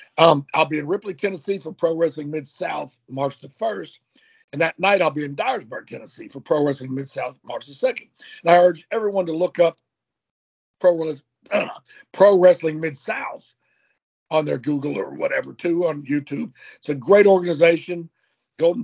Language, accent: English, American